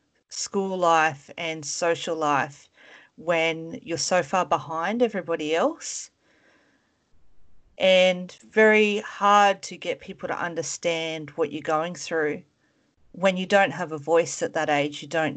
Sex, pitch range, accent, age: female, 155-185 Hz, Australian, 40-59